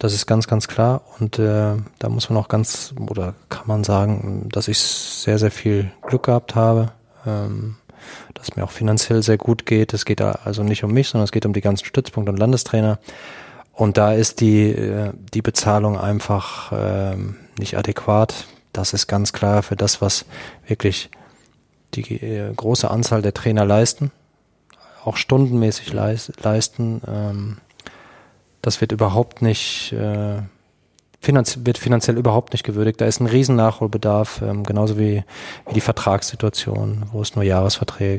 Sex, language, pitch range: male, German, 105-115 Hz